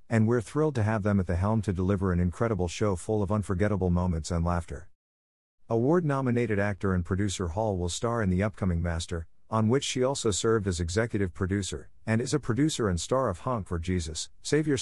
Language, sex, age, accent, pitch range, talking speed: English, male, 50-69, American, 90-115 Hz, 205 wpm